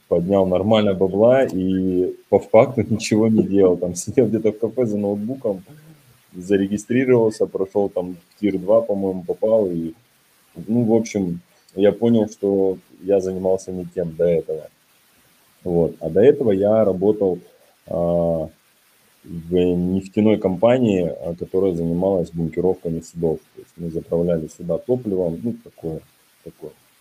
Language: Russian